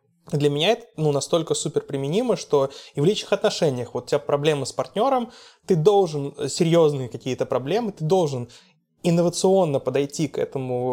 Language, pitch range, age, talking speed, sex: Russian, 135-160 Hz, 20-39, 160 wpm, male